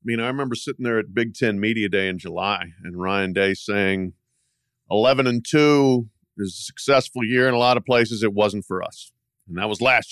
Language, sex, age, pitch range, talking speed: English, male, 50-69, 105-140 Hz, 220 wpm